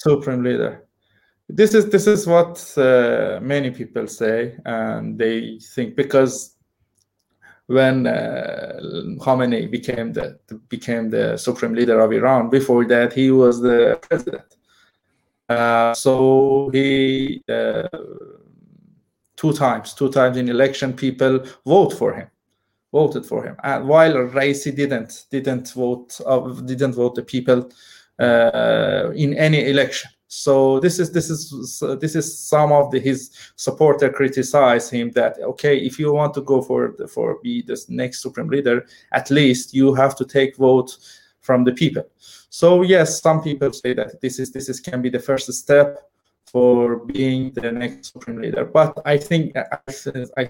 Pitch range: 125-145 Hz